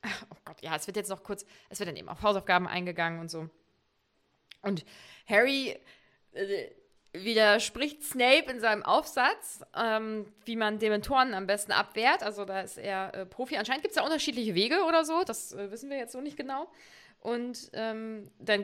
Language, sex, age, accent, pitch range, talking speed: German, female, 20-39, German, 200-245 Hz, 185 wpm